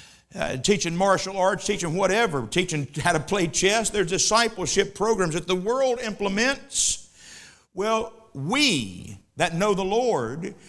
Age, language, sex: 60-79, English, male